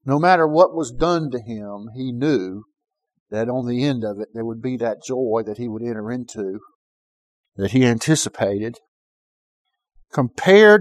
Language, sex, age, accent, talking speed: English, male, 50-69, American, 160 wpm